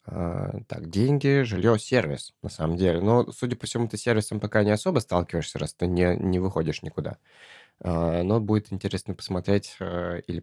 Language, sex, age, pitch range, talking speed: Russian, male, 20-39, 90-110 Hz, 185 wpm